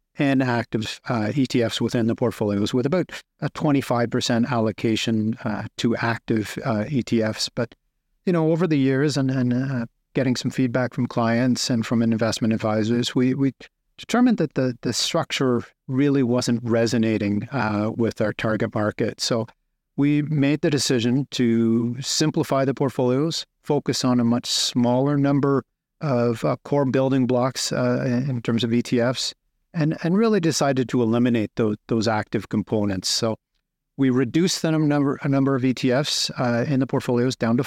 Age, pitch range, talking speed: 50-69, 115-140 Hz, 160 wpm